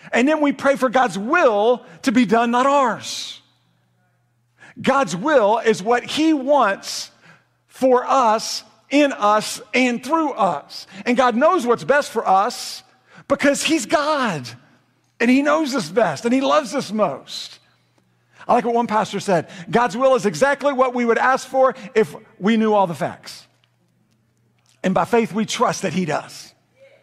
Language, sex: English, male